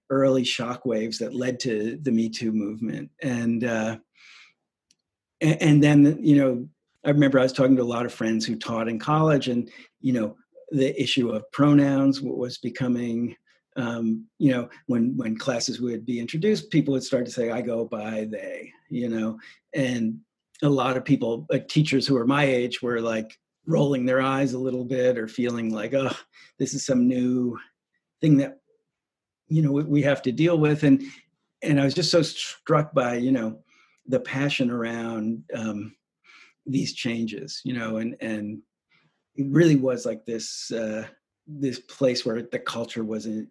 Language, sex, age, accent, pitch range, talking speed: English, male, 40-59, American, 115-145 Hz, 175 wpm